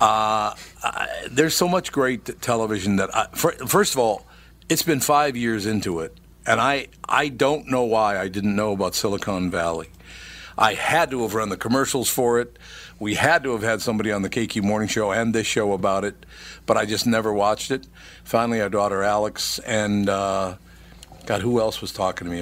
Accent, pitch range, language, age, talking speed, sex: American, 100-125 Hz, English, 50-69, 200 wpm, male